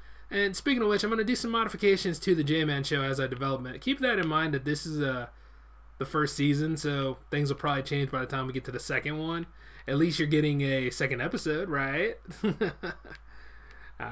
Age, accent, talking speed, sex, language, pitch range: 20-39, American, 220 wpm, male, English, 125-170 Hz